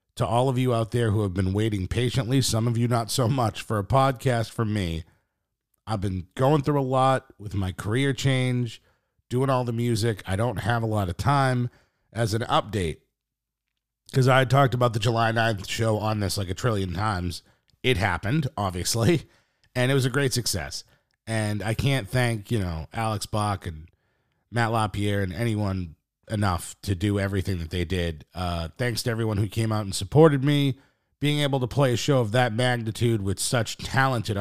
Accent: American